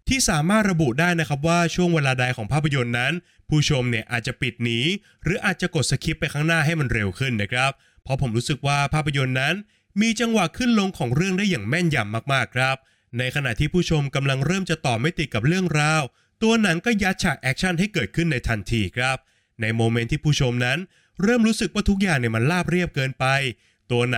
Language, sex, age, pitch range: Thai, male, 20-39, 120-170 Hz